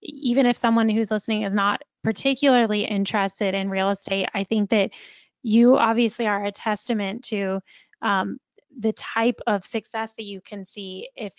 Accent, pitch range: American, 195-230 Hz